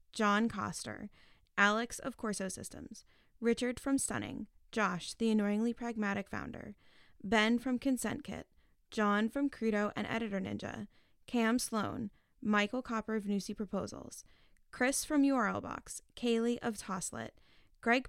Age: 10-29